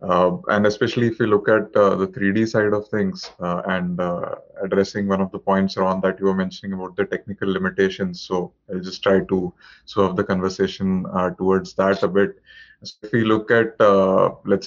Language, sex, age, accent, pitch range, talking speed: English, male, 20-39, Indian, 95-100 Hz, 210 wpm